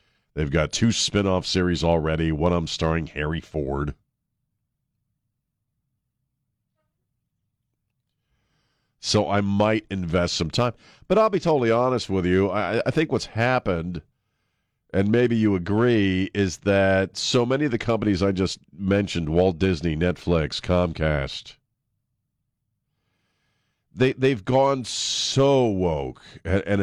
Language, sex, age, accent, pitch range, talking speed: English, male, 50-69, American, 85-115 Hz, 125 wpm